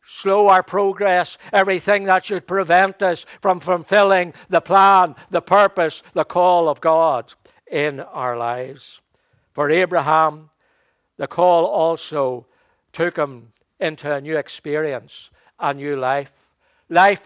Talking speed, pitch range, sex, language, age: 125 wpm, 150-185 Hz, male, English, 60-79